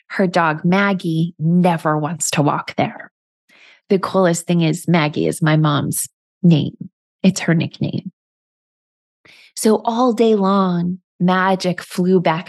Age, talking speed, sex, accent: 20-39, 130 wpm, female, American